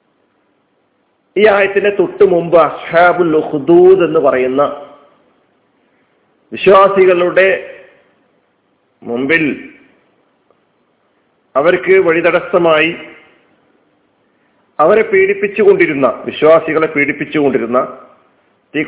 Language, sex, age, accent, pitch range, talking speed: Malayalam, male, 40-59, native, 145-195 Hz, 60 wpm